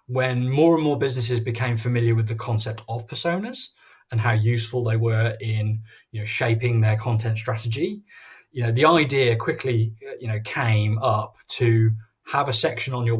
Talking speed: 175 wpm